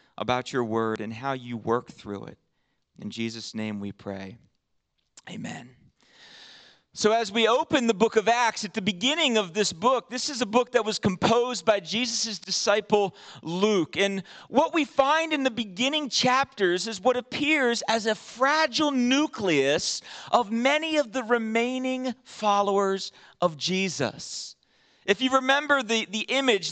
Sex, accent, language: male, American, English